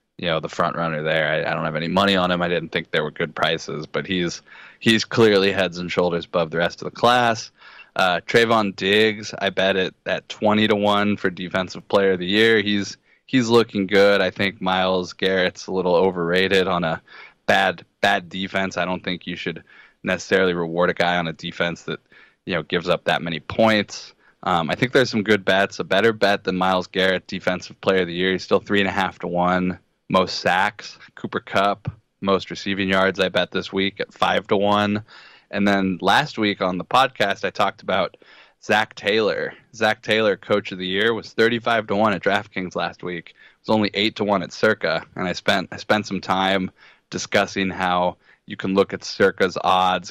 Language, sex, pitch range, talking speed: English, male, 90-100 Hz, 210 wpm